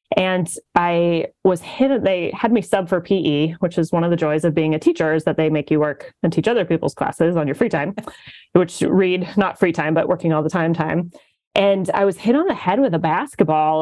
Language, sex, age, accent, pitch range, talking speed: English, female, 20-39, American, 160-195 Hz, 245 wpm